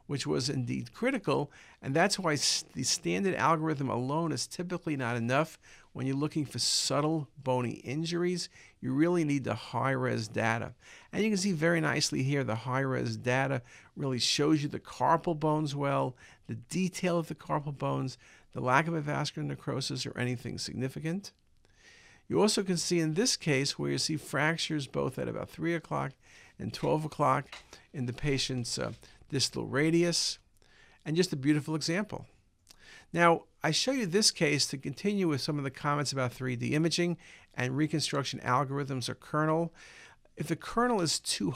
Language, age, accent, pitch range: English, 50-69, American, 130-165 Hz